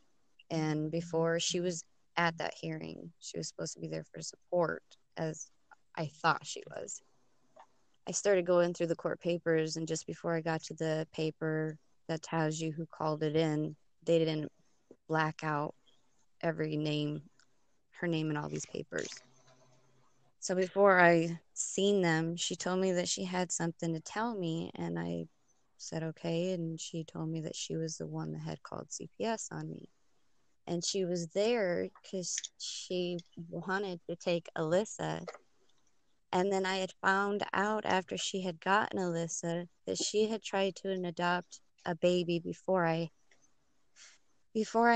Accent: American